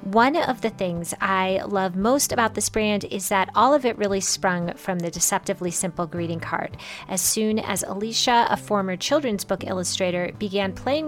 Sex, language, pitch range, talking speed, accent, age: female, English, 185-225 Hz, 185 wpm, American, 30-49